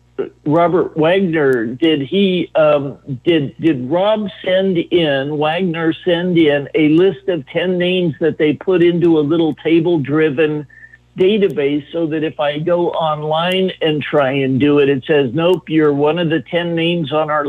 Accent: American